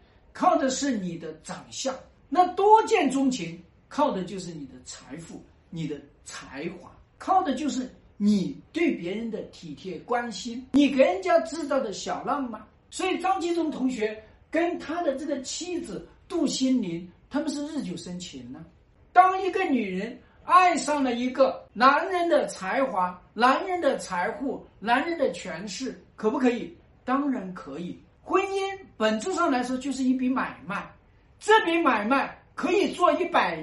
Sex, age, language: male, 50-69, Chinese